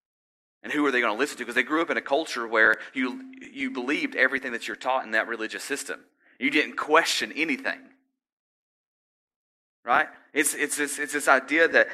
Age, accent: 30-49, American